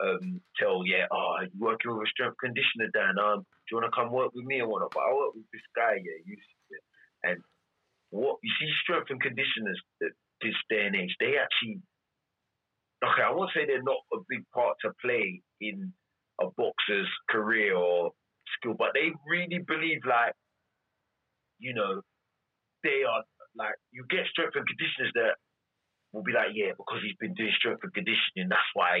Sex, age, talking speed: male, 30-49, 190 wpm